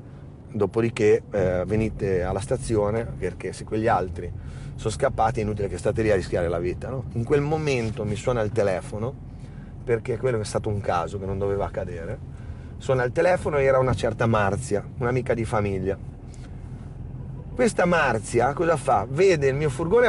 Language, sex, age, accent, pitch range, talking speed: Italian, male, 30-49, native, 110-140 Hz, 170 wpm